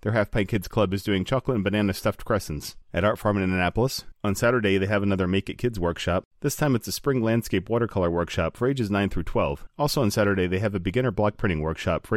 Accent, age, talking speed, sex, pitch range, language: American, 40-59, 240 wpm, male, 95-120 Hz, English